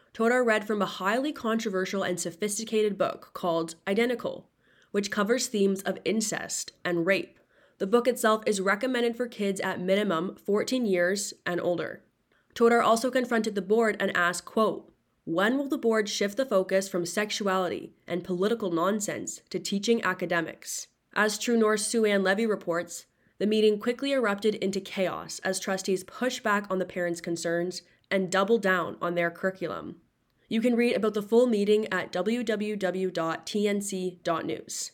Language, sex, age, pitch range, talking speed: English, female, 20-39, 180-215 Hz, 155 wpm